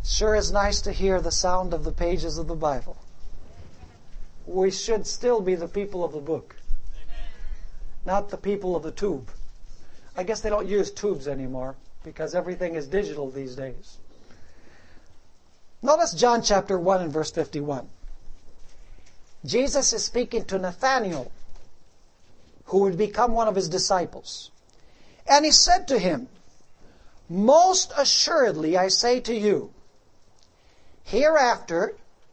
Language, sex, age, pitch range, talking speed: English, male, 60-79, 150-240 Hz, 135 wpm